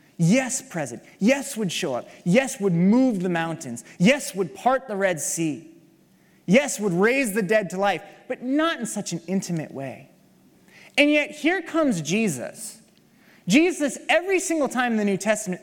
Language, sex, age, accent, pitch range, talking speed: English, male, 30-49, American, 180-250 Hz, 170 wpm